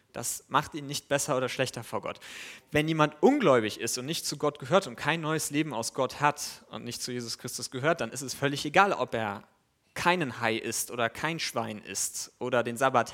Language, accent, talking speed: German, German, 220 wpm